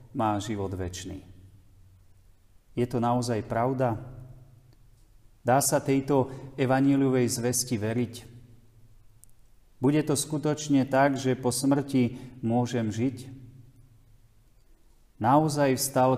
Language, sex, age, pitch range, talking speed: Slovak, male, 40-59, 110-130 Hz, 90 wpm